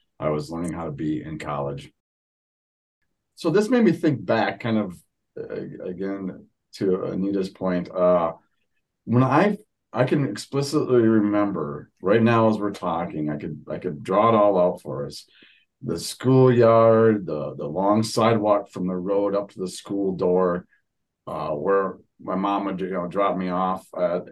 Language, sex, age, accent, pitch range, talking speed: English, male, 40-59, American, 90-120 Hz, 165 wpm